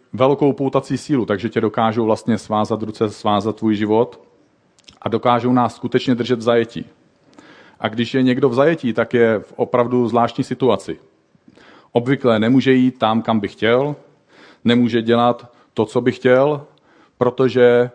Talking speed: 150 wpm